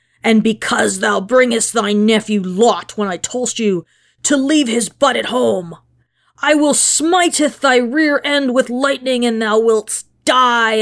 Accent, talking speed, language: American, 160 wpm, English